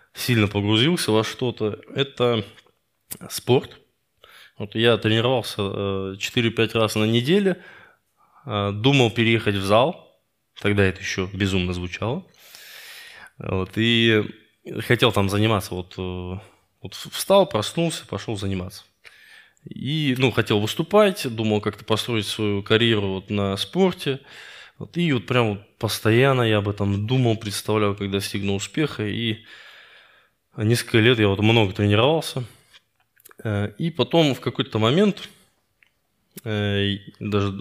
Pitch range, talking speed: 100-125 Hz, 115 wpm